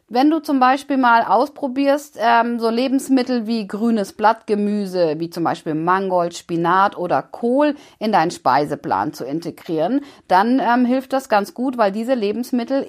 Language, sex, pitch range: German, female, 195-265 Hz